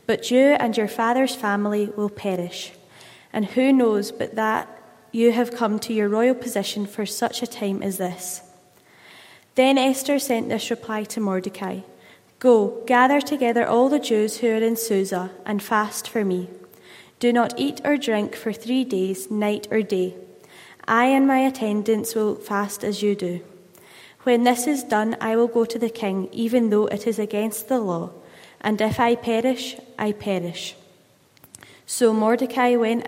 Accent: British